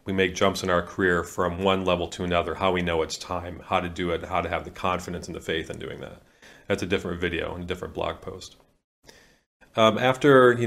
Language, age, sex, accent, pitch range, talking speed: English, 40-59, male, American, 90-105 Hz, 240 wpm